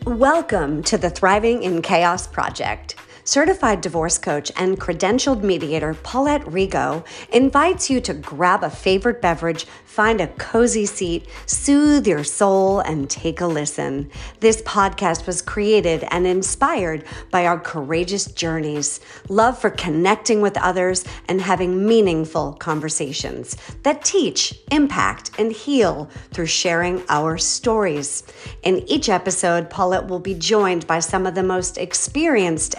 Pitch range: 165-225 Hz